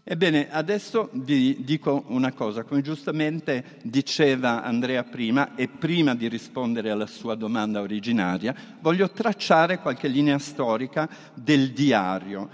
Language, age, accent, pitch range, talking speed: Italian, 50-69, native, 125-170 Hz, 125 wpm